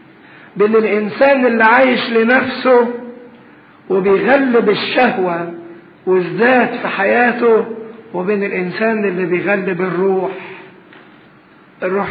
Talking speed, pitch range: 80 wpm, 180-225 Hz